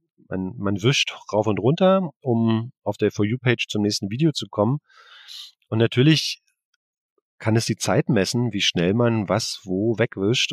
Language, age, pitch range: German, 40-59, 105-130 Hz